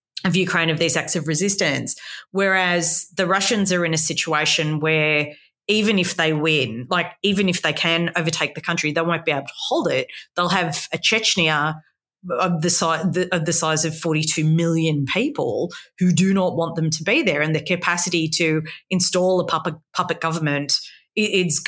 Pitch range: 155-185 Hz